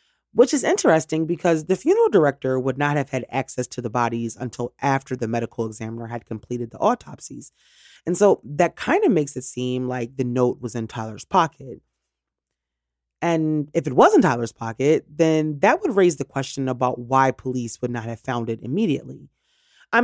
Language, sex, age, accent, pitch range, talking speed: English, female, 30-49, American, 120-160 Hz, 185 wpm